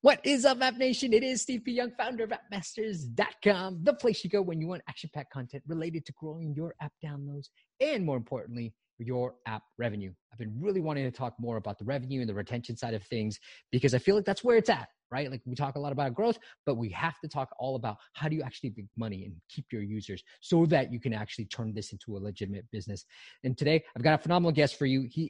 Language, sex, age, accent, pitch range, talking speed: English, male, 20-39, American, 115-165 Hz, 250 wpm